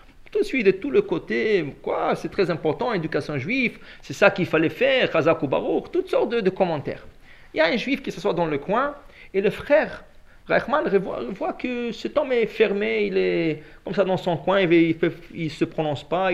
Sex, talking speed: male, 215 wpm